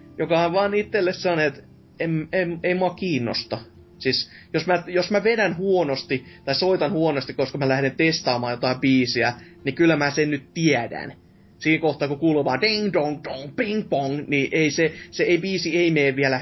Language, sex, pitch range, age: Finnish, male, 130-170 Hz, 20-39